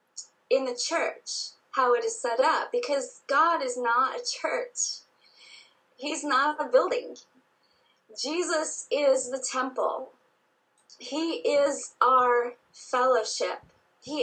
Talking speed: 115 wpm